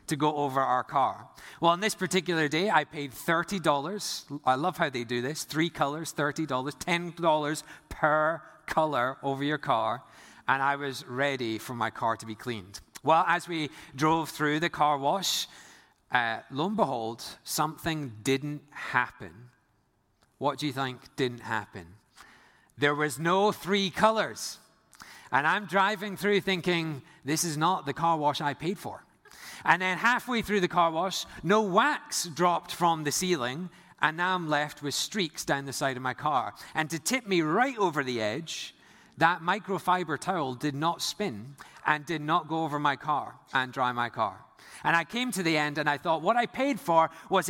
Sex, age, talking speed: male, 30-49, 180 wpm